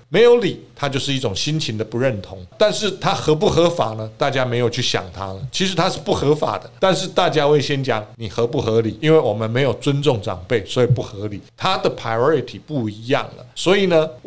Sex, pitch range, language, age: male, 120-160 Hz, Chinese, 50-69